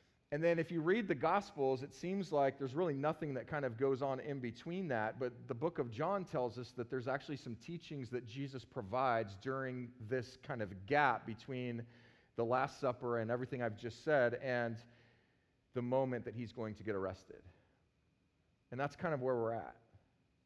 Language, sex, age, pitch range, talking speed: English, male, 40-59, 110-135 Hz, 195 wpm